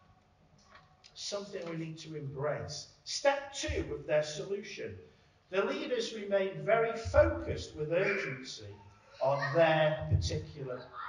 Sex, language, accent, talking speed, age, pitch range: male, English, British, 110 wpm, 50-69, 135-195 Hz